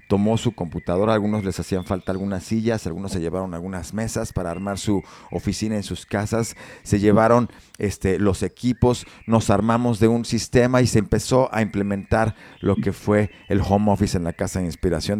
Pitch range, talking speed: 90-110 Hz, 185 wpm